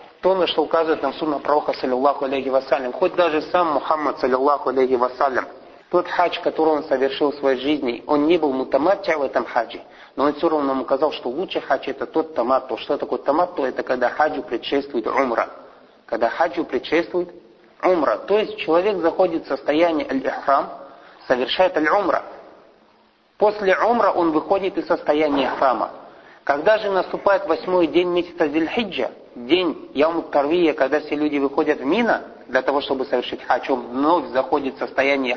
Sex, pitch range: male, 135-175 Hz